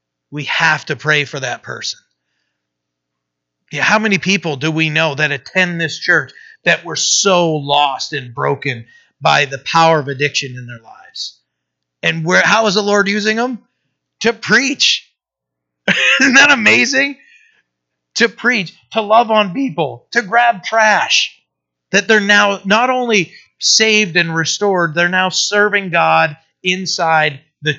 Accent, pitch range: American, 140-190 Hz